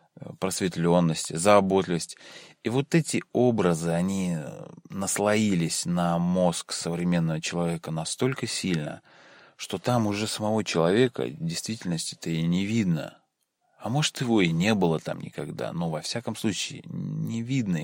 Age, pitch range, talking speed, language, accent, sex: 20-39, 85-110 Hz, 130 wpm, Russian, native, male